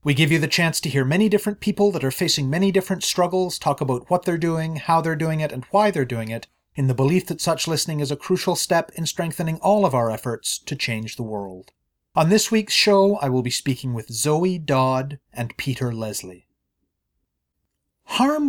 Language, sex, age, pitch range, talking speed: English, male, 30-49, 135-195 Hz, 210 wpm